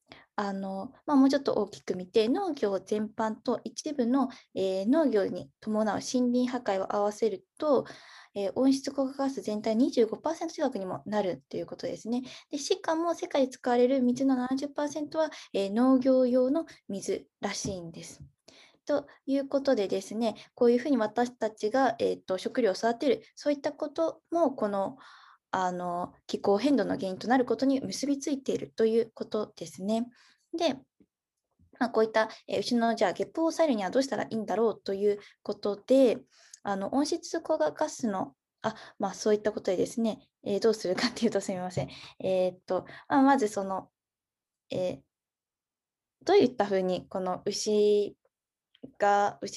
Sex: female